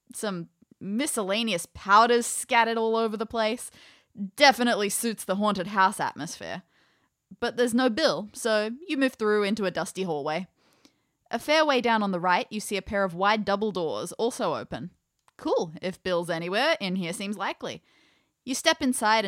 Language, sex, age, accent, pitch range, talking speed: English, female, 20-39, Australian, 185-240 Hz, 170 wpm